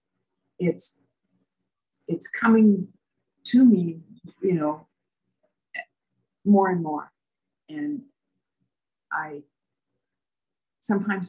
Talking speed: 70 wpm